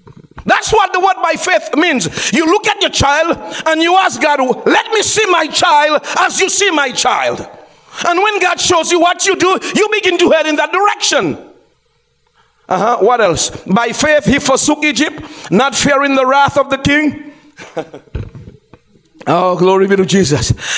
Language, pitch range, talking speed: English, 260-370 Hz, 175 wpm